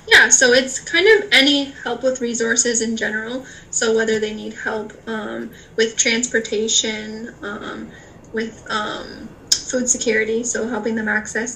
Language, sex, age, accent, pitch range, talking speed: English, female, 10-29, American, 215-240 Hz, 145 wpm